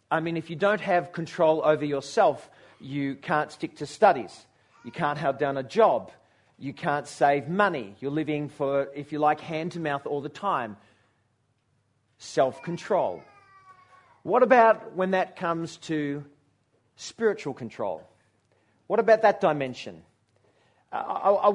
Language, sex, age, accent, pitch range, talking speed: English, male, 40-59, Australian, 145-190 Hz, 140 wpm